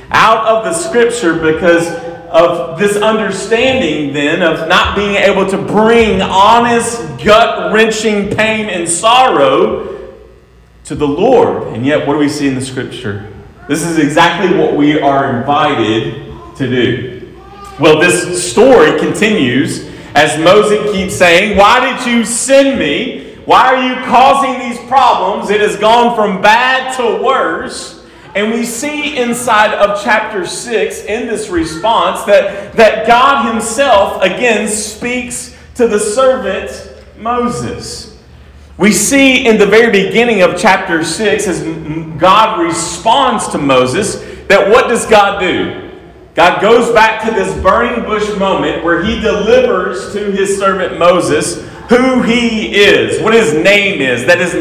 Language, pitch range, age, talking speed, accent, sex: English, 175-235 Hz, 40-59, 145 wpm, American, male